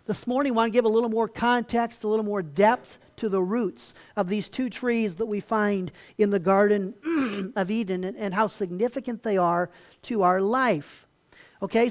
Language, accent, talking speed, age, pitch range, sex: English, American, 190 wpm, 50-69, 180-230 Hz, male